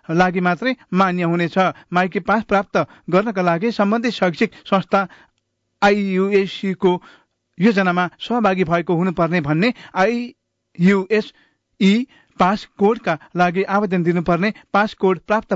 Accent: Indian